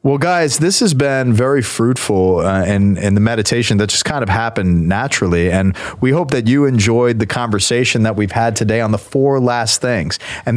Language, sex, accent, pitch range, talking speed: English, male, American, 115-150 Hz, 205 wpm